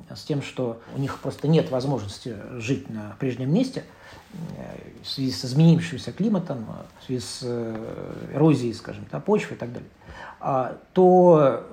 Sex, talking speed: male, 140 wpm